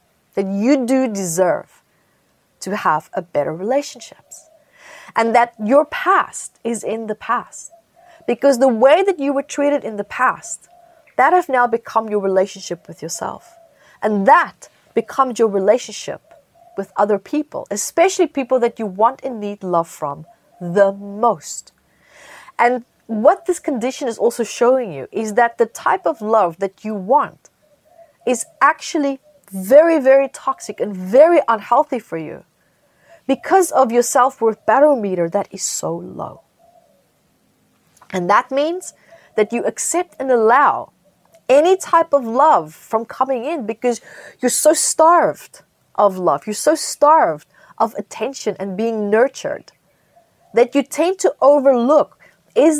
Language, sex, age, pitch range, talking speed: English, female, 30-49, 210-300 Hz, 140 wpm